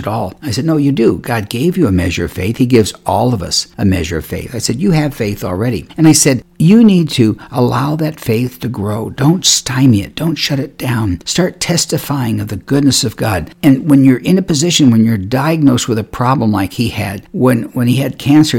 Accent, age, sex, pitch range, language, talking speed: American, 60-79, male, 105-145 Hz, English, 240 wpm